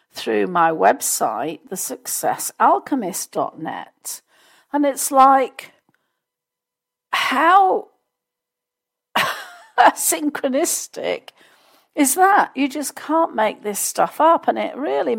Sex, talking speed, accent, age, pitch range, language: female, 85 wpm, British, 50-69, 215-305 Hz, English